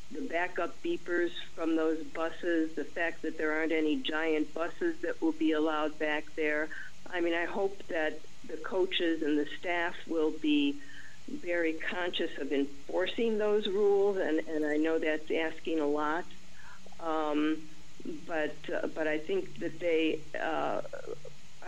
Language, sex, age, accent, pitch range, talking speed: English, female, 50-69, American, 145-170 Hz, 150 wpm